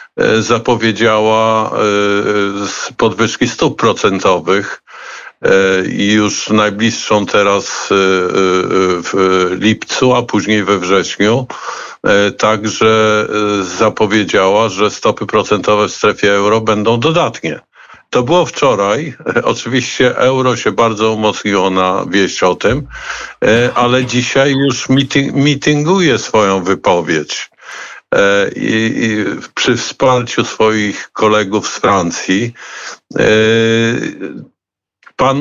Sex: male